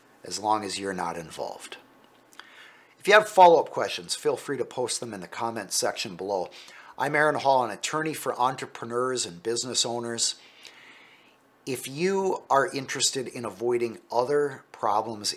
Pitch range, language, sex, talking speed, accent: 120-155 Hz, English, male, 150 wpm, American